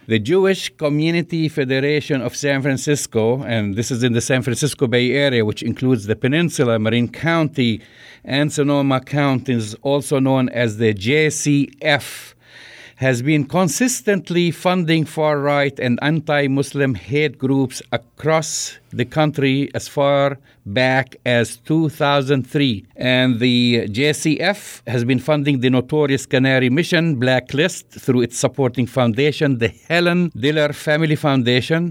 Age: 50-69